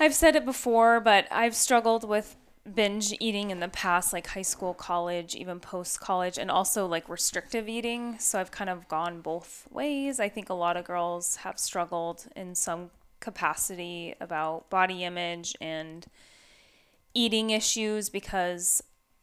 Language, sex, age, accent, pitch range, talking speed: English, female, 20-39, American, 180-230 Hz, 155 wpm